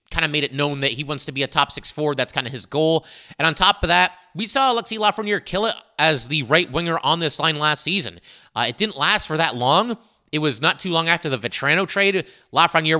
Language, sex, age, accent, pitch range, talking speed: English, male, 30-49, American, 135-170 Hz, 260 wpm